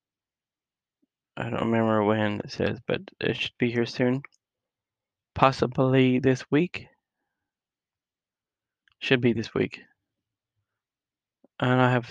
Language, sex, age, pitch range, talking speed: English, male, 20-39, 120-130 Hz, 110 wpm